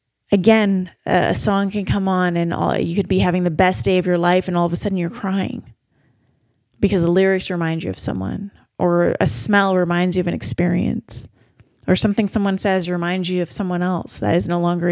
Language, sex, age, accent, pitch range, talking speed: English, female, 20-39, American, 140-195 Hz, 210 wpm